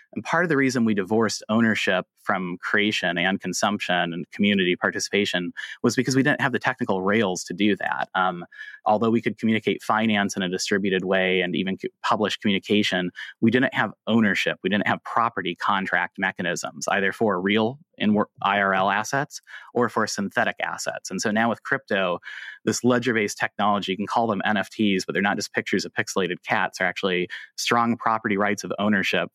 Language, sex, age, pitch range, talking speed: English, male, 30-49, 100-120 Hz, 180 wpm